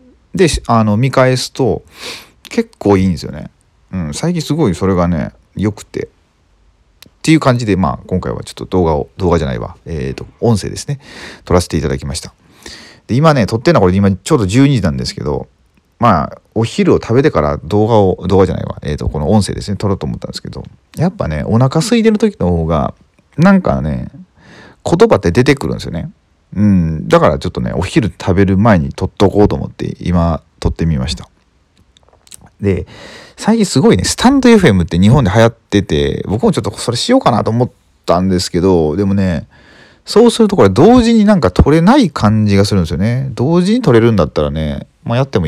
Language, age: Japanese, 40-59